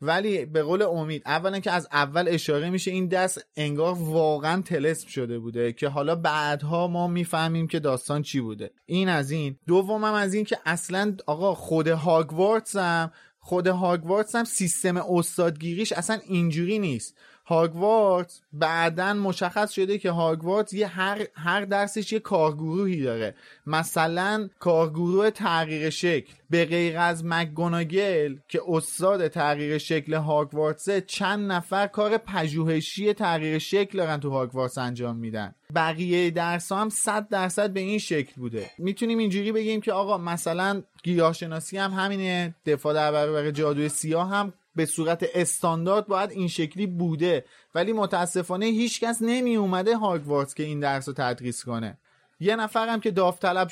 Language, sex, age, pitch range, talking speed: Persian, male, 30-49, 155-200 Hz, 145 wpm